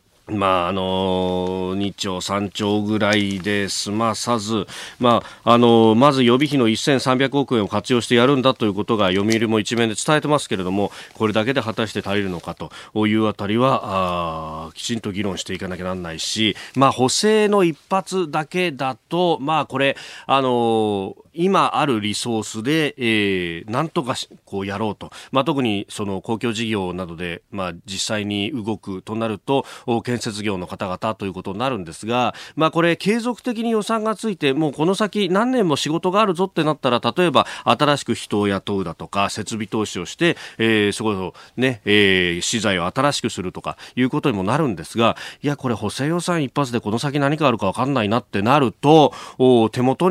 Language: Japanese